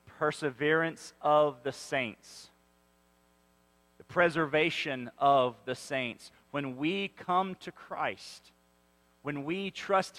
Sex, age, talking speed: male, 40-59, 100 wpm